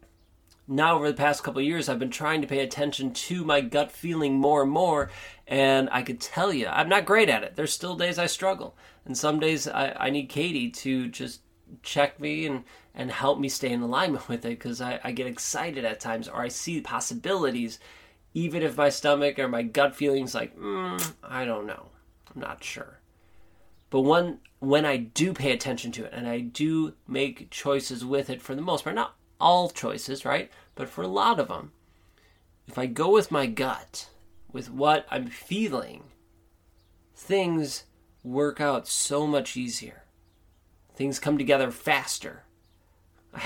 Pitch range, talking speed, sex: 115-155 Hz, 185 wpm, male